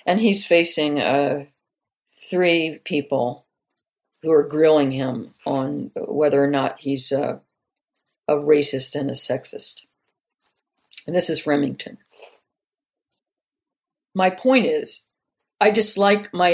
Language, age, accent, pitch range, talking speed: English, 50-69, American, 145-200 Hz, 115 wpm